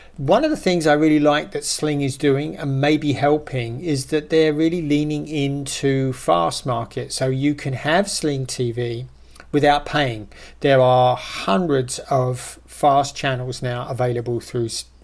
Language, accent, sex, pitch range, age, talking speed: English, British, male, 125-145 Hz, 40-59, 155 wpm